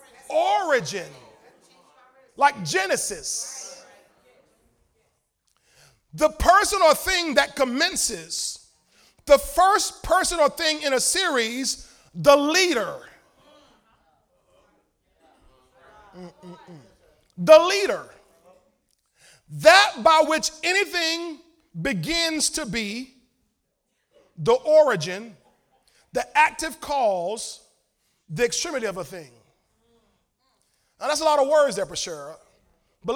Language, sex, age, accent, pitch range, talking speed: English, male, 40-59, American, 245-355 Hz, 90 wpm